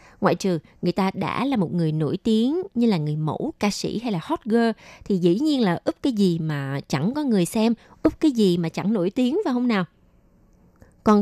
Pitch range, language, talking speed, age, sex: 165-230 Hz, Vietnamese, 230 wpm, 20-39, female